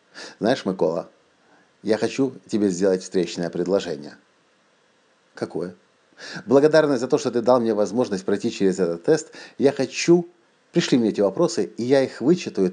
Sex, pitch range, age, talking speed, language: male, 100-140 Hz, 50-69, 145 wpm, Russian